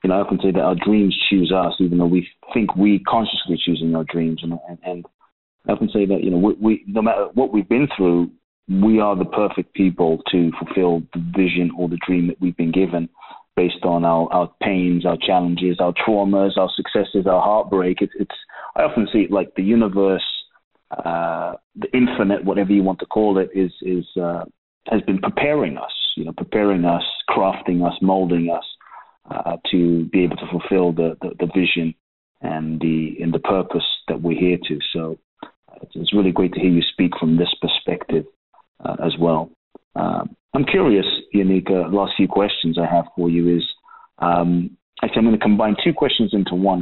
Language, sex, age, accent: English, male, 30-49, British